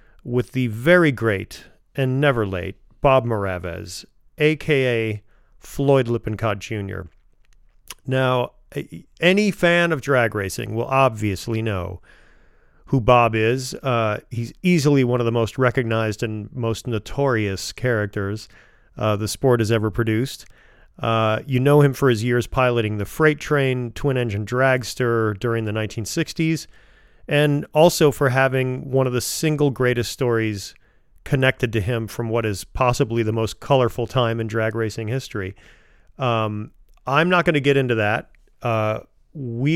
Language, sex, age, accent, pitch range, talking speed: English, male, 40-59, American, 105-135 Hz, 145 wpm